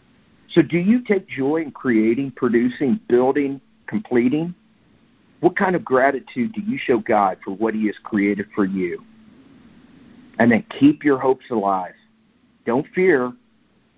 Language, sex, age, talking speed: English, male, 50-69, 140 wpm